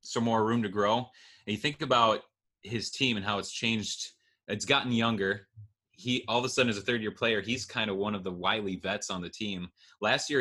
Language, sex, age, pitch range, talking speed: English, male, 20-39, 100-120 Hz, 235 wpm